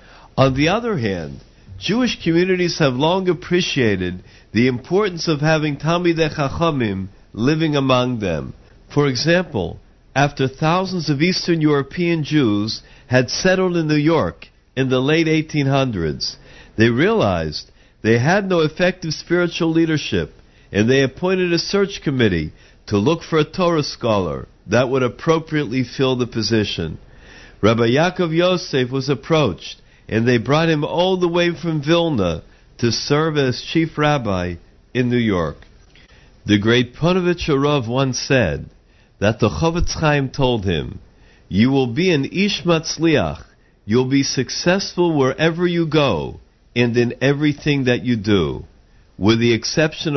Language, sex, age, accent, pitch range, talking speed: English, male, 50-69, American, 115-165 Hz, 140 wpm